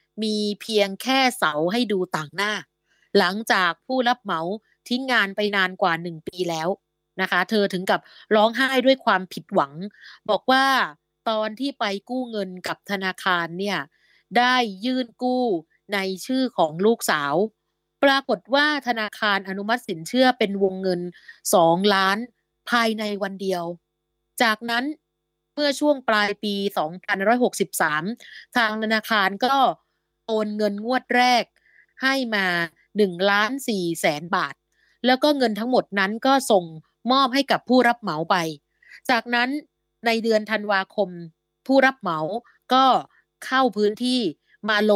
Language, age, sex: Thai, 30-49, female